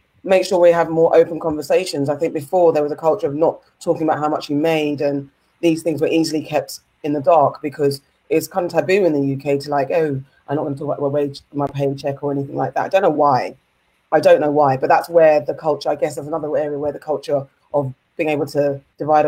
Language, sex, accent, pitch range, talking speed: English, female, British, 140-165 Hz, 260 wpm